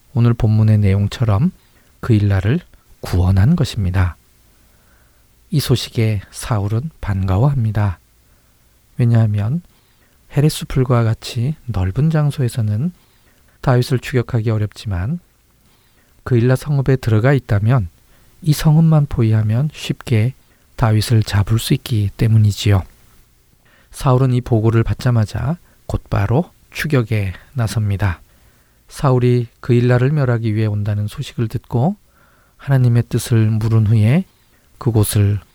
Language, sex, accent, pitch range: Korean, male, native, 110-130 Hz